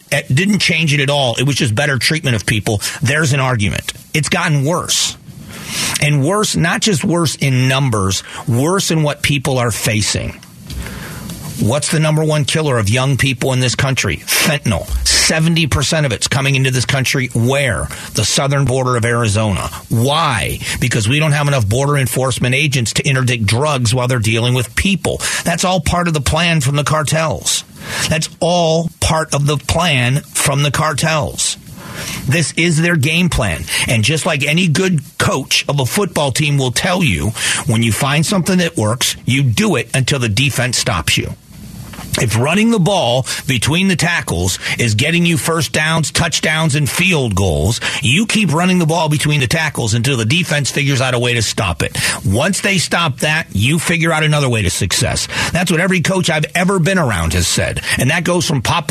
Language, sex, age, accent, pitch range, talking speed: English, male, 40-59, American, 125-165 Hz, 185 wpm